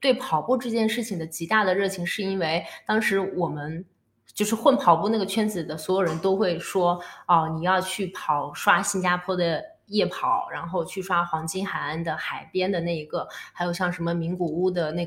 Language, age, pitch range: Chinese, 20-39, 165-200 Hz